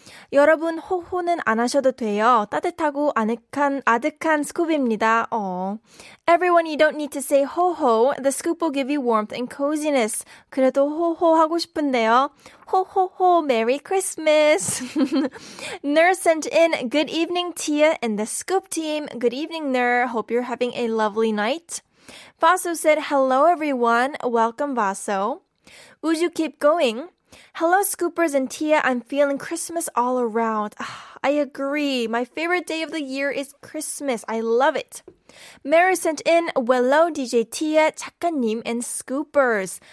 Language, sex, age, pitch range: Korean, female, 10-29, 240-320 Hz